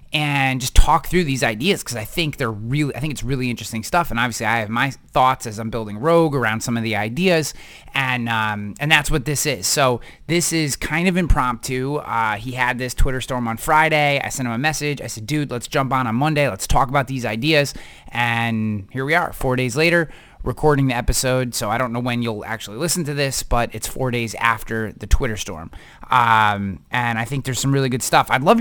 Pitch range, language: 110-145 Hz, English